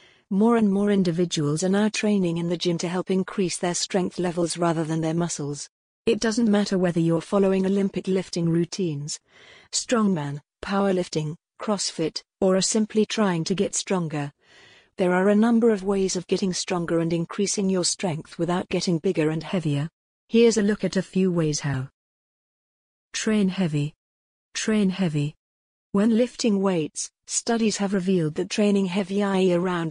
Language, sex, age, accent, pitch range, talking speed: English, female, 40-59, British, 170-205 Hz, 160 wpm